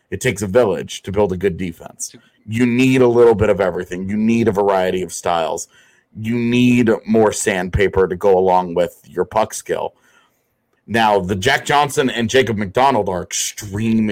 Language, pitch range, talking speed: English, 95-120 Hz, 180 wpm